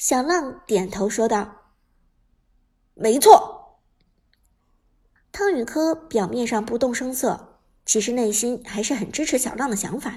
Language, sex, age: Chinese, male, 50-69